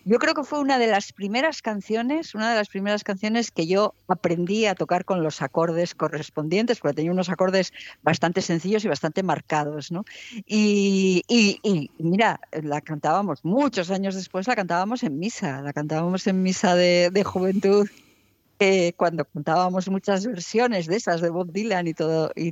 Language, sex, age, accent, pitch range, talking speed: Spanish, female, 50-69, Spanish, 170-220 Hz, 175 wpm